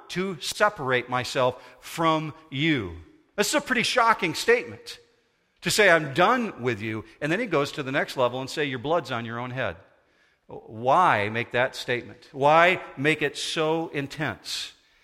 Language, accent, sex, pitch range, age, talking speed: English, American, male, 125-175 Hz, 50-69, 170 wpm